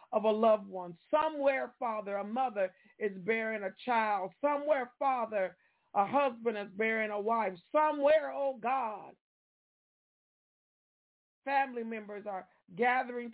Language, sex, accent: English, female, American